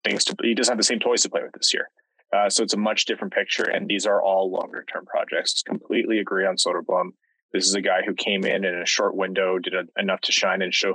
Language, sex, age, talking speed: English, male, 20-39, 265 wpm